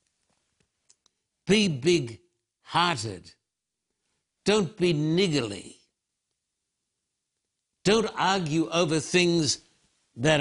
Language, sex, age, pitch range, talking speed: English, male, 60-79, 110-155 Hz, 65 wpm